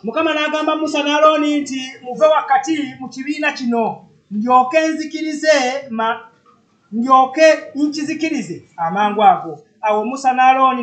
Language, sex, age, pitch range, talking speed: English, male, 30-49, 225-280 Hz, 110 wpm